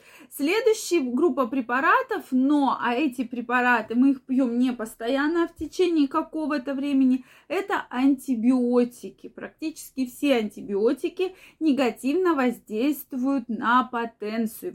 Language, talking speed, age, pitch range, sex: Russian, 105 wpm, 20-39, 240-320 Hz, female